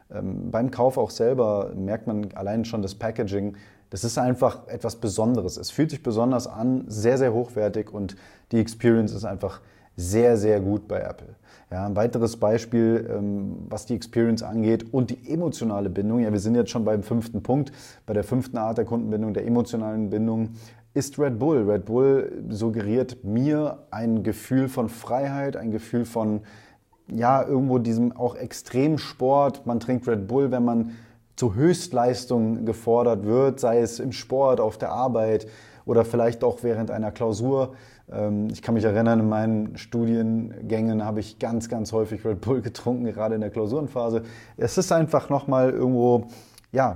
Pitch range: 105-120 Hz